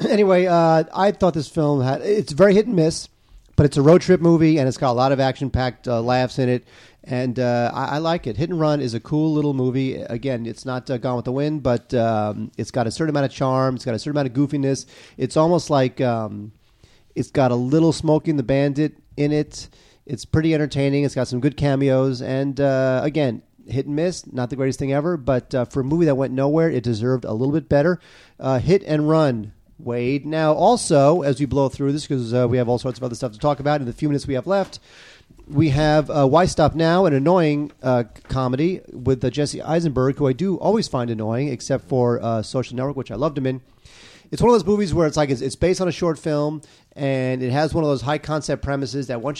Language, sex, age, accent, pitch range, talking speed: English, male, 40-59, American, 125-155 Hz, 240 wpm